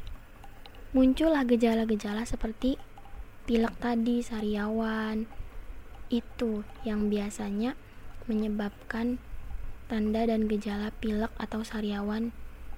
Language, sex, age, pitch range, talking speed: Indonesian, female, 20-39, 215-235 Hz, 75 wpm